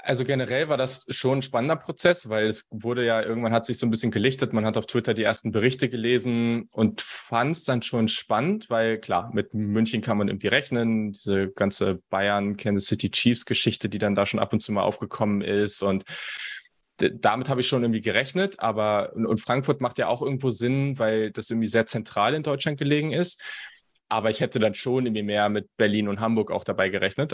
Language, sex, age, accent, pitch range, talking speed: German, male, 20-39, German, 110-130 Hz, 210 wpm